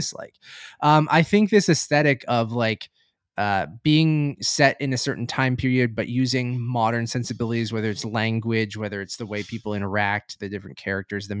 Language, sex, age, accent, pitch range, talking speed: English, male, 20-39, American, 110-145 Hz, 175 wpm